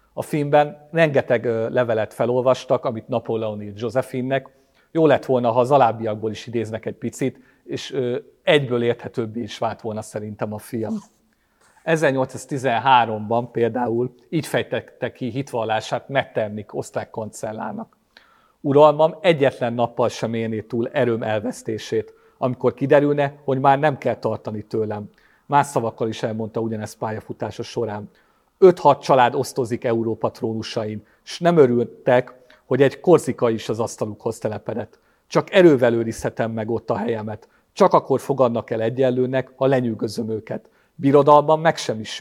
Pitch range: 110-135 Hz